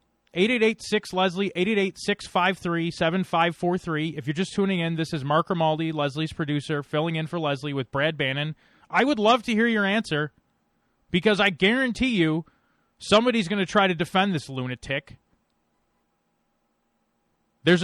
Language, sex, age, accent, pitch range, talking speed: English, male, 30-49, American, 125-175 Hz, 180 wpm